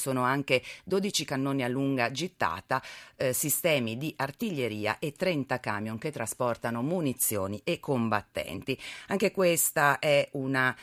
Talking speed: 125 wpm